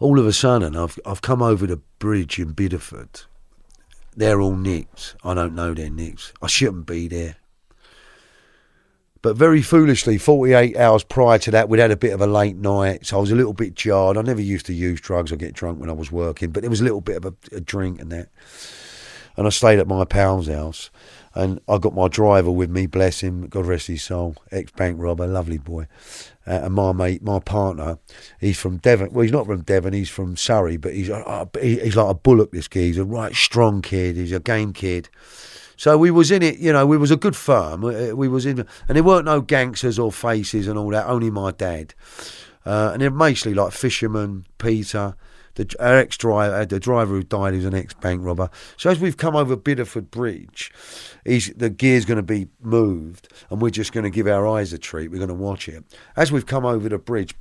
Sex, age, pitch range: male, 40-59, 90-120 Hz